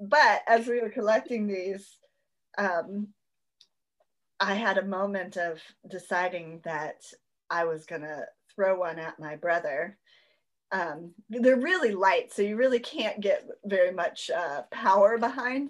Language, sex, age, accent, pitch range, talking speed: English, female, 30-49, American, 190-255 Hz, 140 wpm